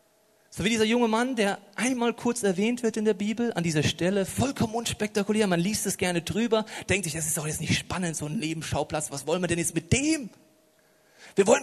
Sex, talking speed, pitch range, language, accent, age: male, 220 wpm, 145-200 Hz, German, German, 40-59